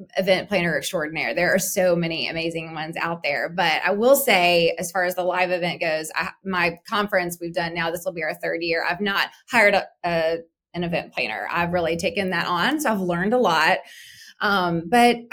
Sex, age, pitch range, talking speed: female, 20-39, 175-210 Hz, 210 wpm